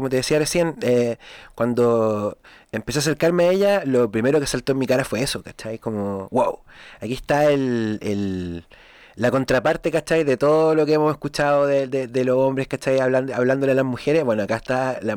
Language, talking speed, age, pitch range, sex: Spanish, 200 wpm, 30-49, 115-150 Hz, male